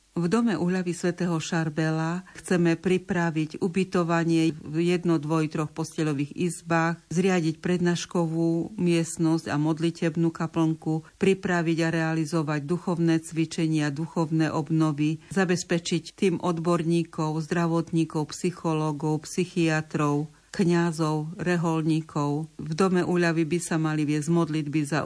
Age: 50-69